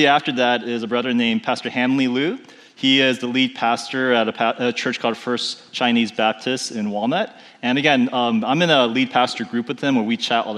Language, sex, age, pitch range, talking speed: English, male, 30-49, 120-170 Hz, 225 wpm